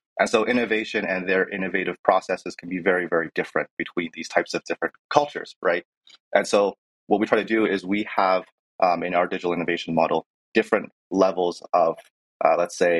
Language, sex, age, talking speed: English, male, 30-49, 190 wpm